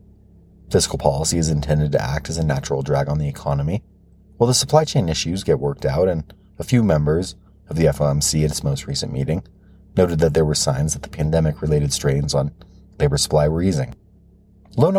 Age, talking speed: 30-49, 190 wpm